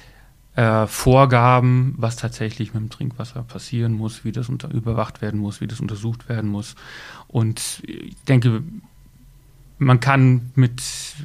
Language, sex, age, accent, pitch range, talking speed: German, male, 30-49, German, 110-130 Hz, 130 wpm